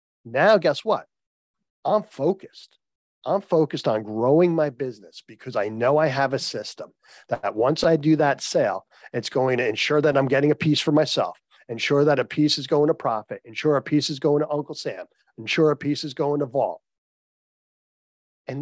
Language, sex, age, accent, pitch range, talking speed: English, male, 40-59, American, 130-165 Hz, 190 wpm